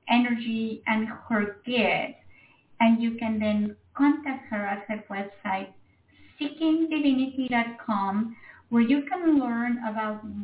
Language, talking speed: English, 110 wpm